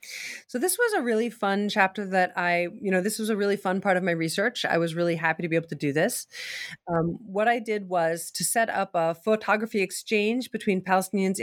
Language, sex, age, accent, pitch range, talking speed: English, female, 40-59, American, 180-230 Hz, 225 wpm